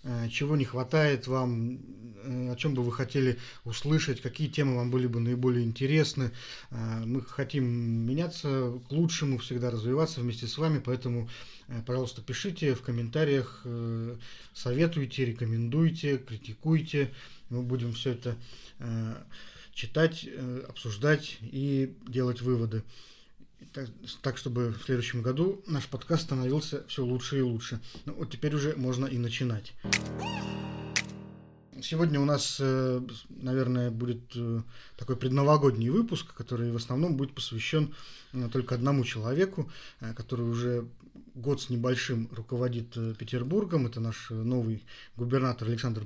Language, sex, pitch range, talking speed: Russian, male, 120-140 Hz, 120 wpm